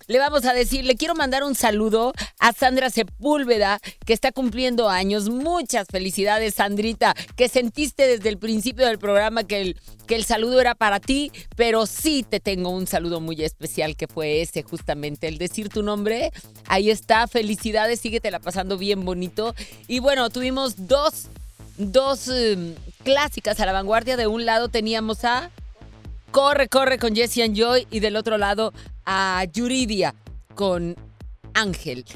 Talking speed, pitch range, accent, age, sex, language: 160 wpm, 190-240 Hz, Mexican, 40-59, female, Italian